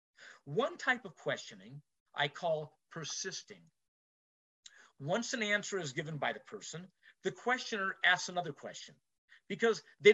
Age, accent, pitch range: 50-69, American, 145-210 Hz